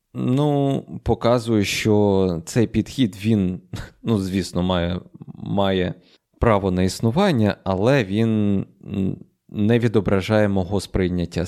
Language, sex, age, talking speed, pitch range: Ukrainian, male, 20-39, 100 wpm, 95-120 Hz